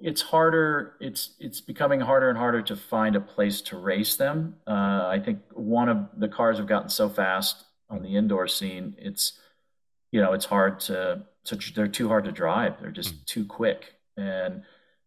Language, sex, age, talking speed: English, male, 40-59, 185 wpm